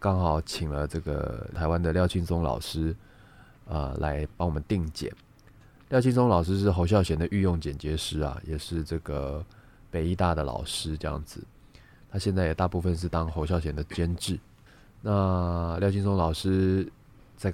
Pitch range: 80-105 Hz